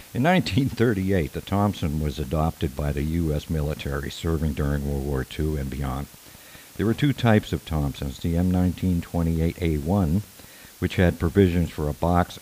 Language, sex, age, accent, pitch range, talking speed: English, male, 60-79, American, 75-100 Hz, 150 wpm